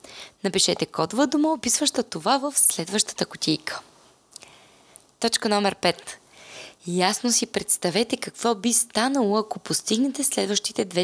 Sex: female